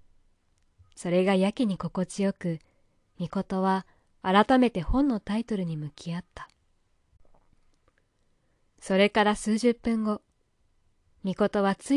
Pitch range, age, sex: 160-215 Hz, 20-39, female